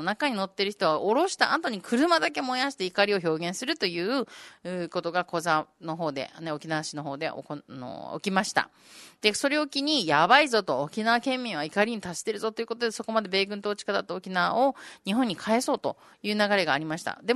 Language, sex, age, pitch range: Japanese, female, 30-49, 170-240 Hz